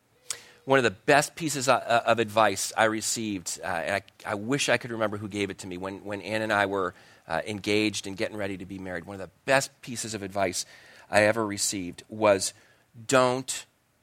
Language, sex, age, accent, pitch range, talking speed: English, male, 40-59, American, 100-130 Hz, 200 wpm